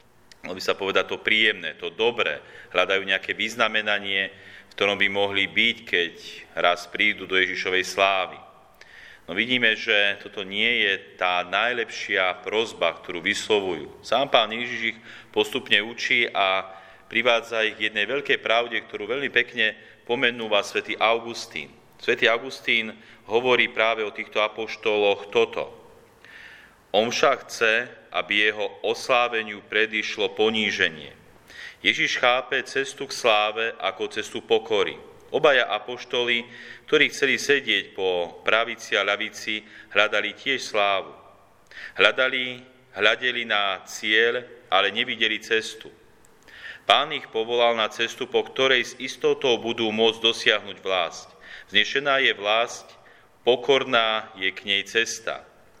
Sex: male